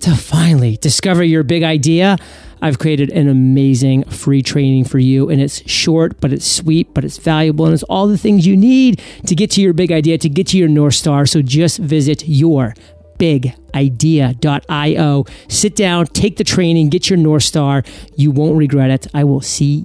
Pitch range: 145-185 Hz